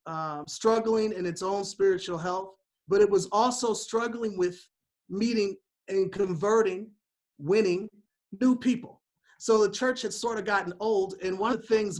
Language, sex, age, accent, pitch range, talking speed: English, male, 40-59, American, 175-215 Hz, 160 wpm